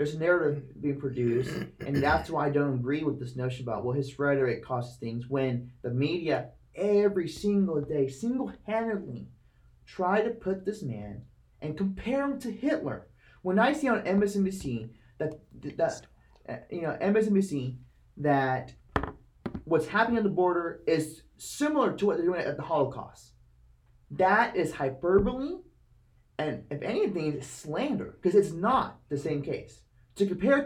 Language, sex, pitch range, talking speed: English, male, 125-195 Hz, 155 wpm